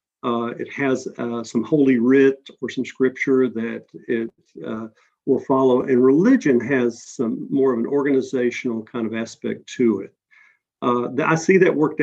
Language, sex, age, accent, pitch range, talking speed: English, male, 50-69, American, 120-140 Hz, 165 wpm